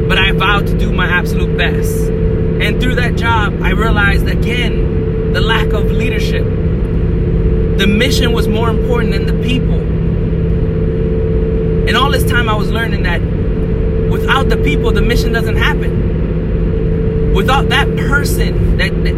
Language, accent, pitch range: English, American, 85-90 Hz